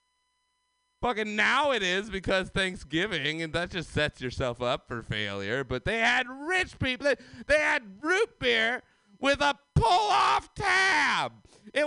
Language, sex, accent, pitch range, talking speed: English, male, American, 165-275 Hz, 145 wpm